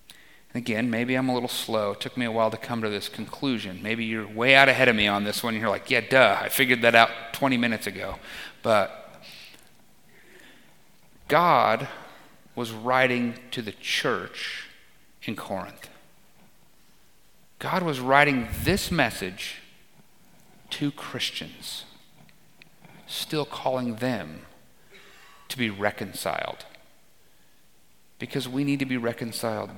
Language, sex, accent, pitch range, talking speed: English, male, American, 120-165 Hz, 130 wpm